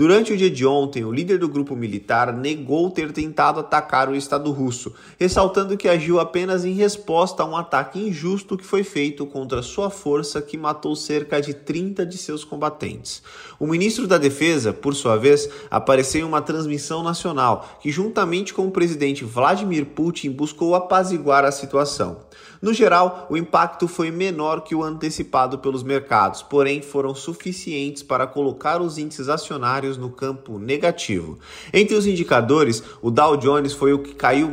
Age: 20-39